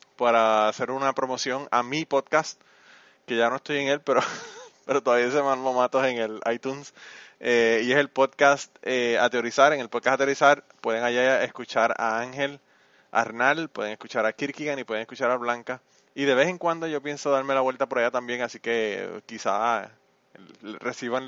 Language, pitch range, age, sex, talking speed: Spanish, 115-140 Hz, 20-39, male, 185 wpm